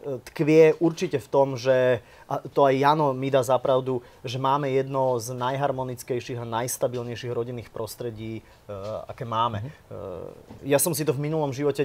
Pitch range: 125-145 Hz